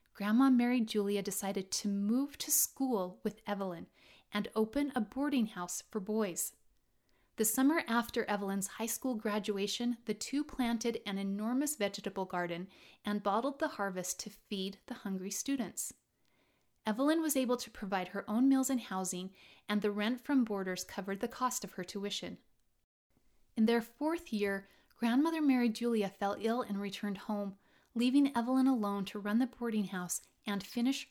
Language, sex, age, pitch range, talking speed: English, female, 30-49, 195-245 Hz, 160 wpm